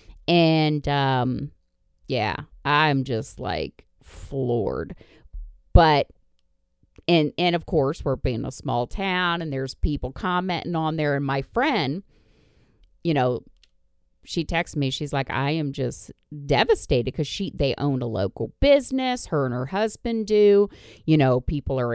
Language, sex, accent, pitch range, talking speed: English, female, American, 130-190 Hz, 145 wpm